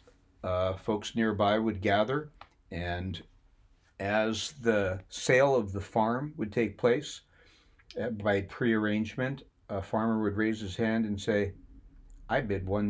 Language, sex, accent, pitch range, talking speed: English, male, American, 95-115 Hz, 130 wpm